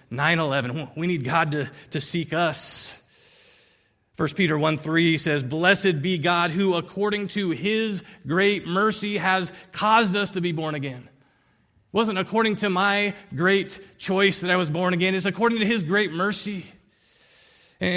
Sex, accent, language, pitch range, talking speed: male, American, English, 145-190 Hz, 155 wpm